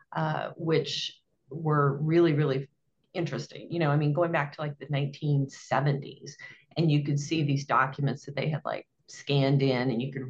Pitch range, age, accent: 145-185 Hz, 40-59, American